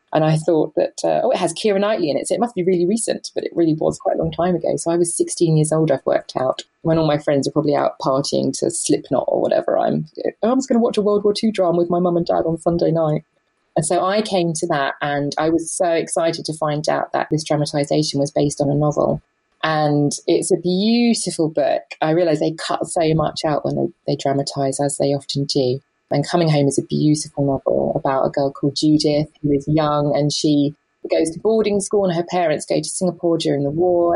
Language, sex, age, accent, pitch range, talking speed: English, female, 20-39, British, 145-170 Hz, 245 wpm